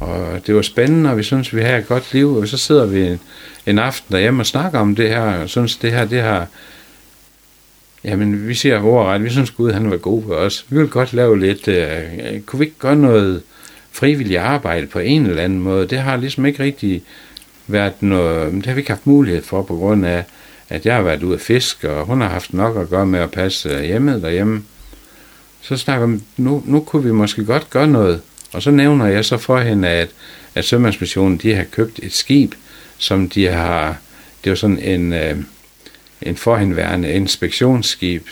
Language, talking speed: Danish, 205 wpm